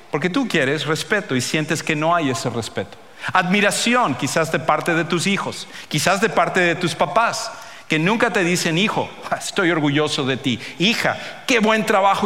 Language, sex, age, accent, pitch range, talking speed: English, male, 50-69, Mexican, 145-195 Hz, 180 wpm